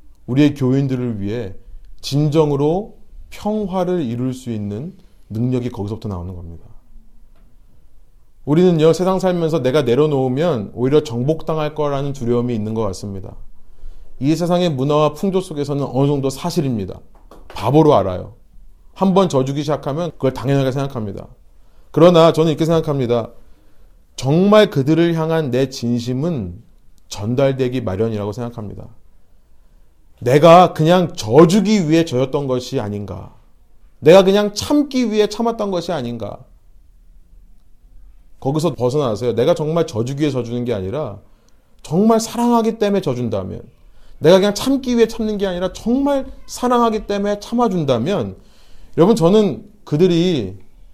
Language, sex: Korean, male